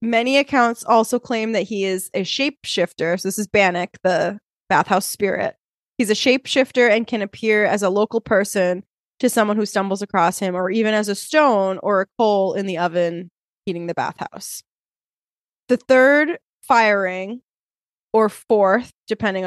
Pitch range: 195-230 Hz